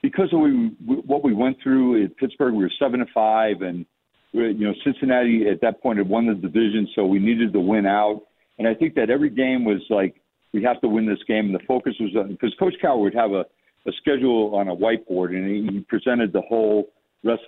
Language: English